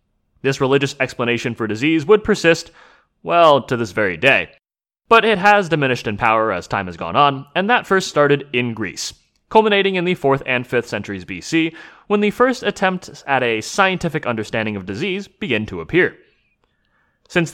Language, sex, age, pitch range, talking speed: English, male, 30-49, 115-175 Hz, 175 wpm